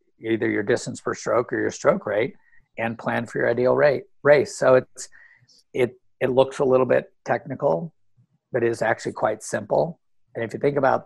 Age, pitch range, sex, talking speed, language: 50-69, 115-145 Hz, male, 195 wpm, English